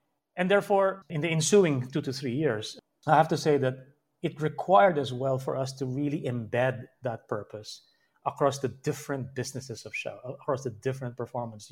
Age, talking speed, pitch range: 30-49, 180 wpm, 125-165 Hz